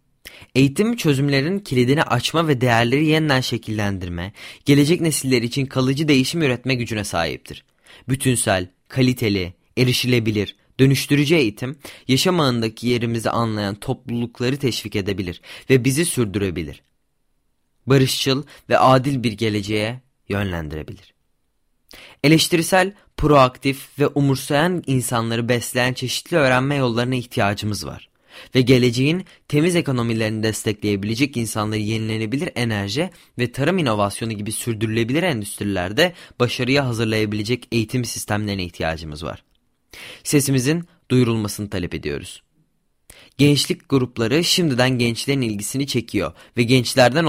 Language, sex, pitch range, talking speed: Turkish, male, 110-140 Hz, 100 wpm